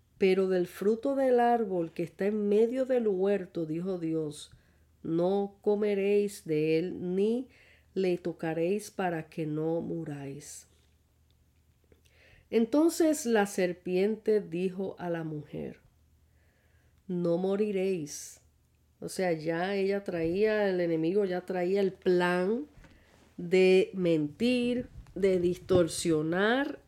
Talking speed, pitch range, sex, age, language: 105 wpm, 160-210 Hz, female, 40-59, Spanish